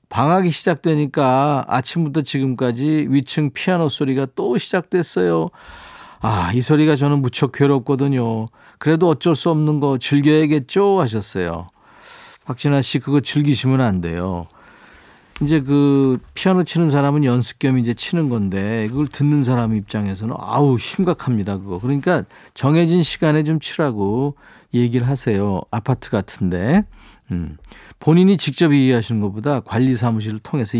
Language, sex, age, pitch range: Korean, male, 40-59, 115-160 Hz